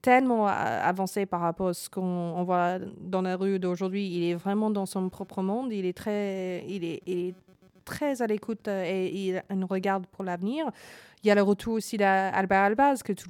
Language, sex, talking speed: French, female, 205 wpm